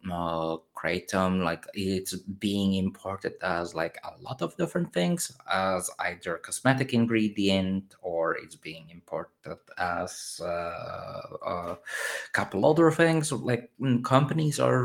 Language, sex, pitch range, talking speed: English, male, 95-115 Hz, 115 wpm